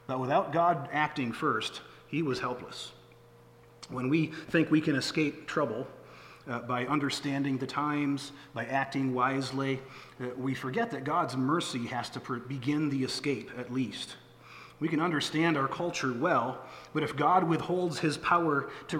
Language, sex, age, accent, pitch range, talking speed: English, male, 40-59, American, 125-160 Hz, 155 wpm